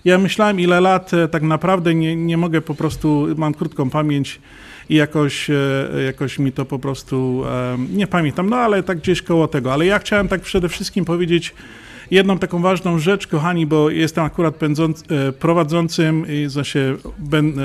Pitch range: 150-175 Hz